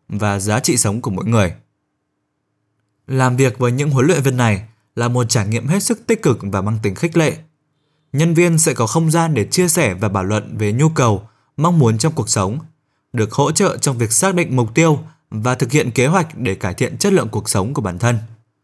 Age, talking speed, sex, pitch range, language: 20-39, 230 wpm, male, 110-160 Hz, Vietnamese